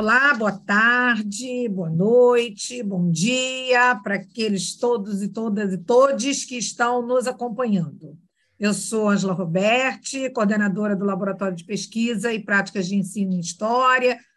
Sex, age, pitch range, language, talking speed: female, 50-69, 200-245 Hz, Portuguese, 140 wpm